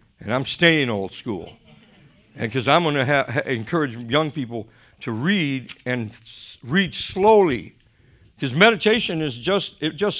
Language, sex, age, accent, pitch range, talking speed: English, male, 60-79, American, 140-195 Hz, 155 wpm